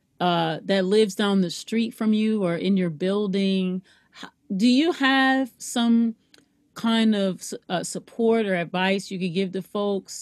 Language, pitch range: English, 185-225 Hz